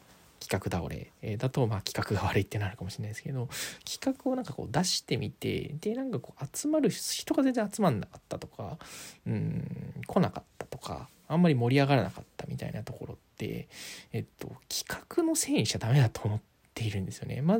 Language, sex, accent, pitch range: Japanese, male, native, 115-165 Hz